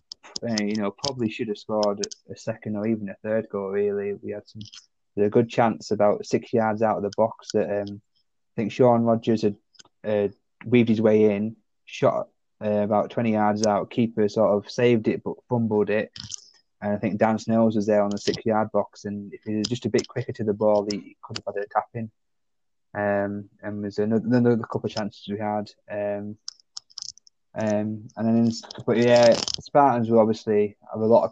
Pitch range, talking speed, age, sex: 105-115 Hz, 205 wpm, 20-39, male